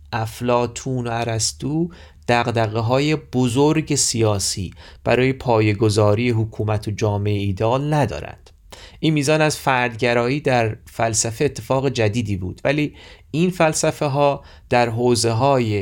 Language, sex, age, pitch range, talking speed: Persian, male, 30-49, 100-135 Hz, 115 wpm